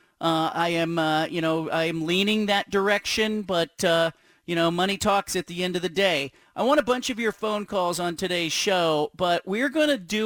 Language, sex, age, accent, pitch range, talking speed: English, male, 40-59, American, 175-230 Hz, 230 wpm